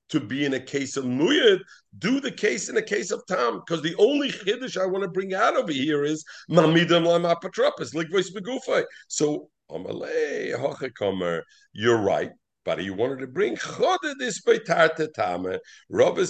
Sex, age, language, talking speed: male, 50-69, English, 170 wpm